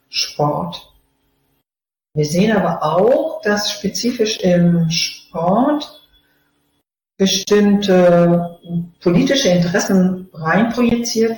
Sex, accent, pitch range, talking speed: female, German, 160-195 Hz, 70 wpm